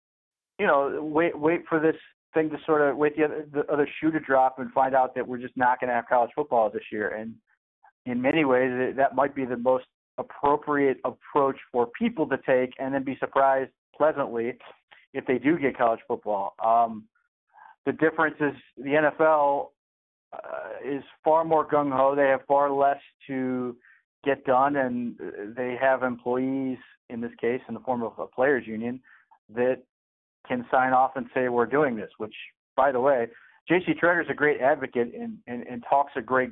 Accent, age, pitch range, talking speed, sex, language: American, 40-59, 120-145 Hz, 190 wpm, male, English